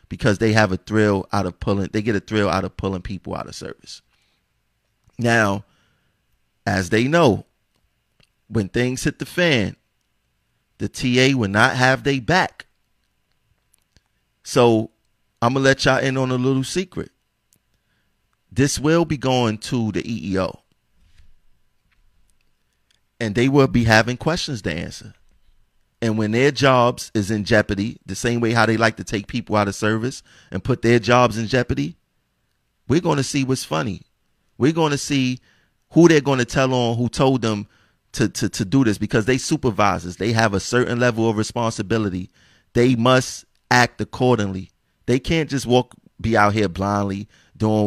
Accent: American